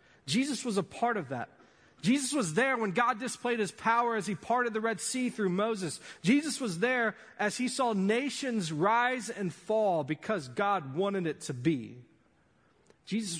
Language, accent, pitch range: English, American, 130-195 Hz